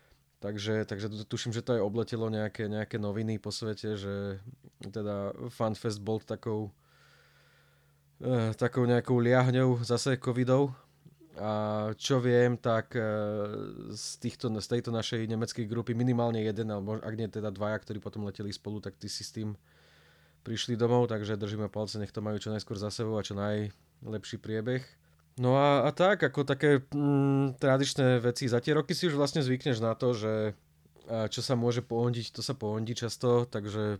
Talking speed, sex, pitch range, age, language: 170 wpm, male, 100-120 Hz, 20-39, Slovak